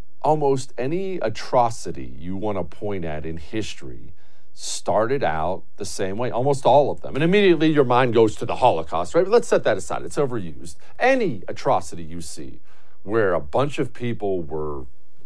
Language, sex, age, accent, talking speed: English, male, 50-69, American, 175 wpm